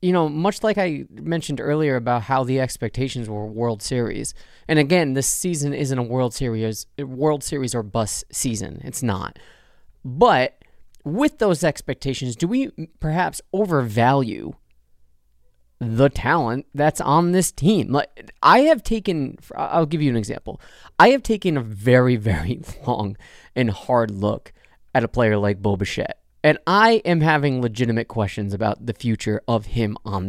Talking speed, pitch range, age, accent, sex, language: 155 wpm, 115-165 Hz, 30-49, American, male, English